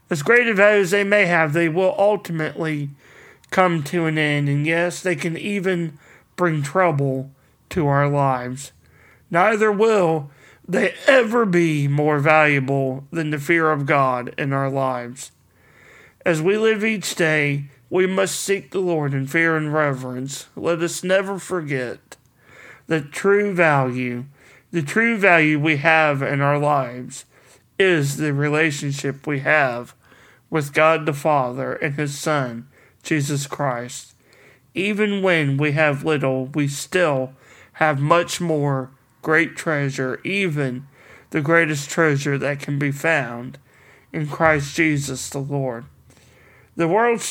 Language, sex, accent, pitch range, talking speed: English, male, American, 135-170 Hz, 140 wpm